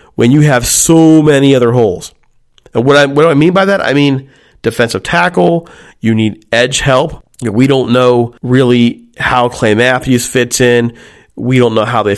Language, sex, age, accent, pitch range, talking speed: English, male, 40-59, American, 115-140 Hz, 185 wpm